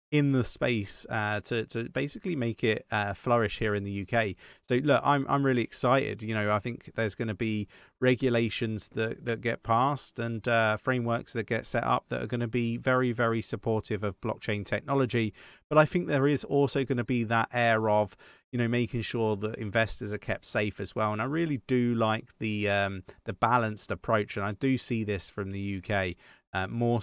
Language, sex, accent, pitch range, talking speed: English, male, British, 100-125 Hz, 210 wpm